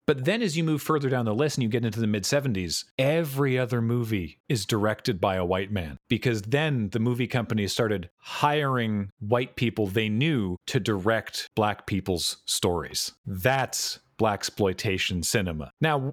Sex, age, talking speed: male, 40-59, 165 wpm